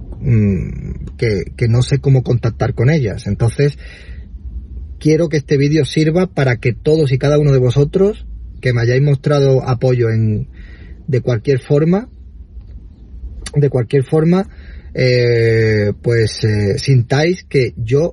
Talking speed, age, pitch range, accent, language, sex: 130 wpm, 30-49, 105-135 Hz, Spanish, Spanish, male